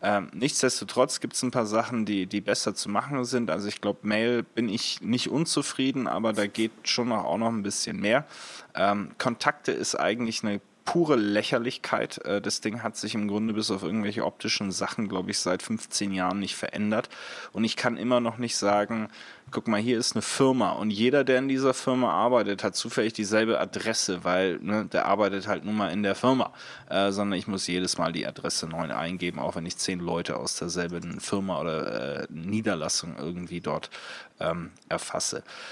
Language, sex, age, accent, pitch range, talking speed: German, male, 20-39, German, 100-125 Hz, 190 wpm